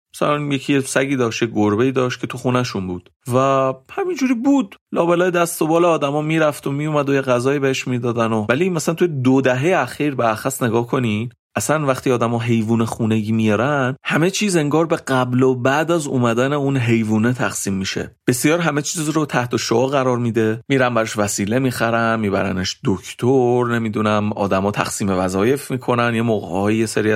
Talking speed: 175 wpm